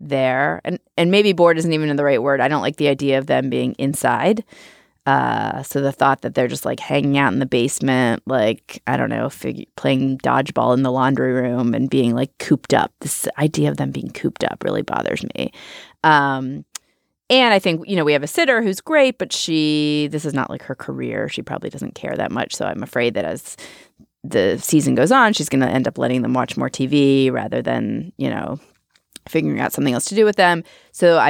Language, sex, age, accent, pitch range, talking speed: English, female, 30-49, American, 130-165 Hz, 225 wpm